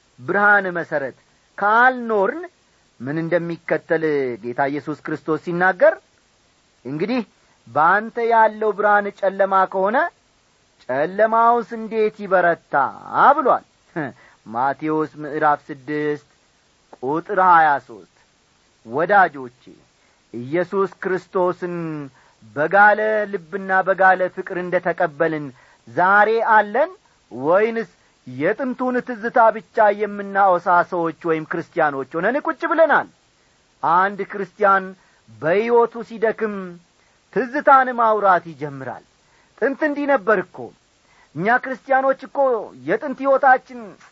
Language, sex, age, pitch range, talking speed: Amharic, male, 40-59, 165-235 Hz, 80 wpm